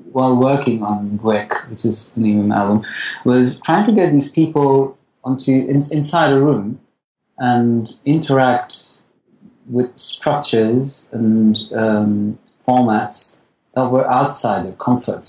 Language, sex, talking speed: English, male, 120 wpm